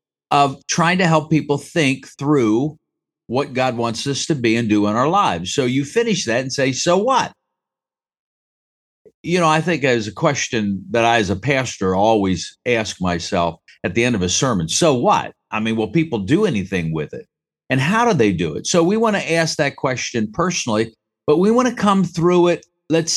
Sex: male